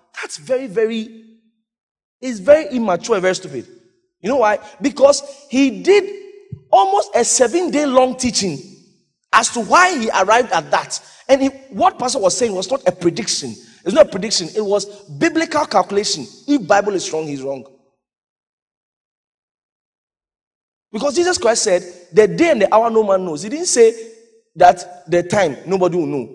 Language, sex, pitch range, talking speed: English, male, 185-285 Hz, 165 wpm